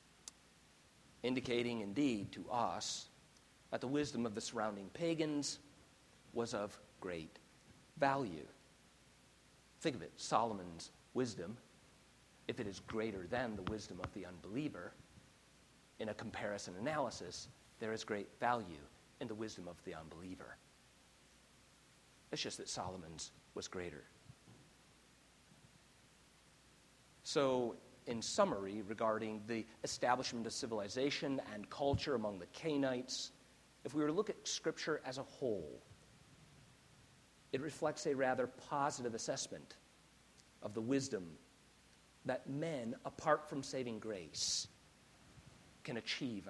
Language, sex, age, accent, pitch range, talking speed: English, male, 50-69, American, 105-140 Hz, 115 wpm